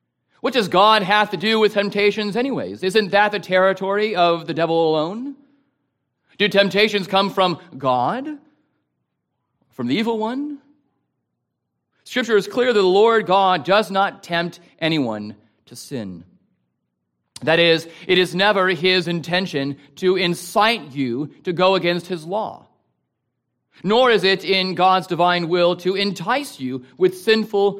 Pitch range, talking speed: 140-205 Hz, 140 wpm